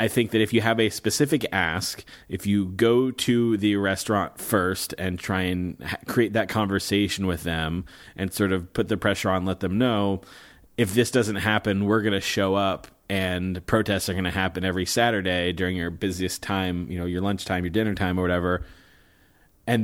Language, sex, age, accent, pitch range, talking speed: English, male, 30-49, American, 95-115 Hz, 200 wpm